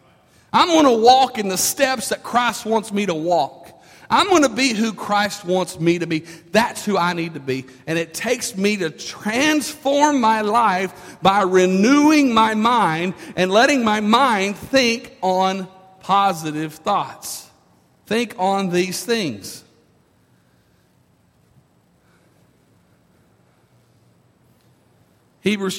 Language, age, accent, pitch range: English, 50-69, American, 190-245 Hz